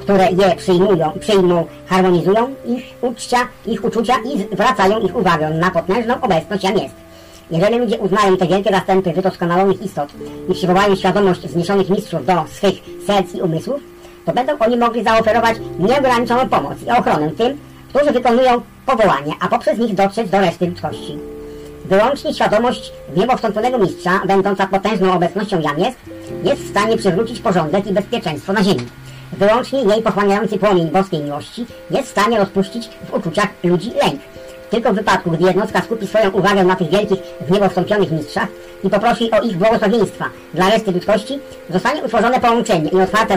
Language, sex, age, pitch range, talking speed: English, male, 50-69, 180-230 Hz, 160 wpm